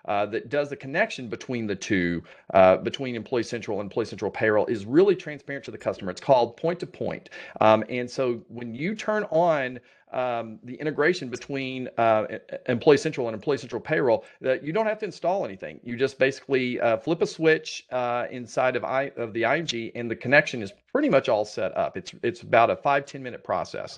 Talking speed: 200 wpm